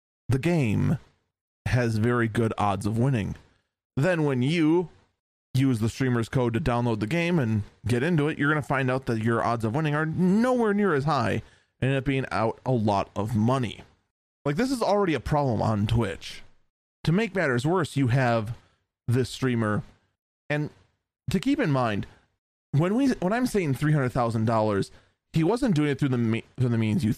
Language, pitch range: English, 110-140 Hz